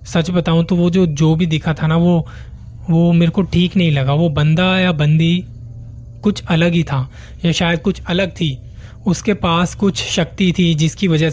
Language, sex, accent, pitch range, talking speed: Hindi, male, native, 140-185 Hz, 195 wpm